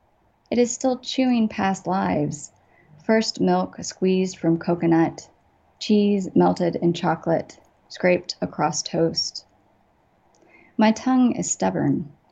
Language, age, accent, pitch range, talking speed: English, 30-49, American, 160-220 Hz, 105 wpm